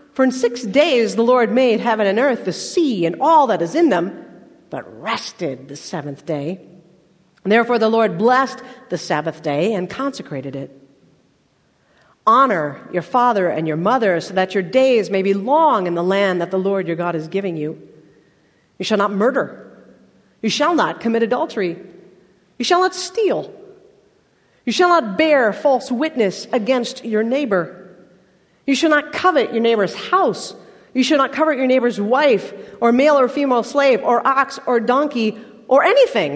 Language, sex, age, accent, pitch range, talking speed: English, female, 50-69, American, 185-270 Hz, 175 wpm